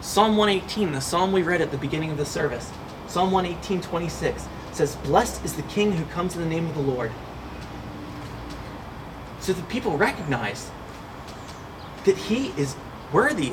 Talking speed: 160 wpm